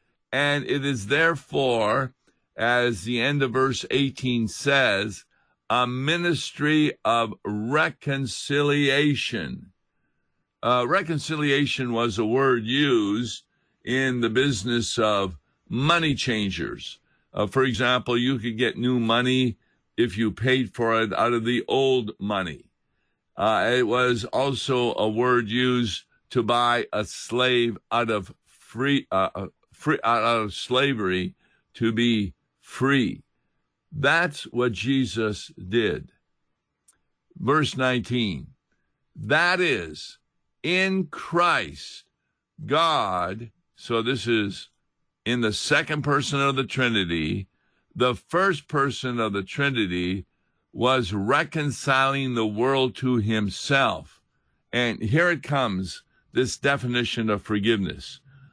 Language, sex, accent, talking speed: English, male, American, 110 wpm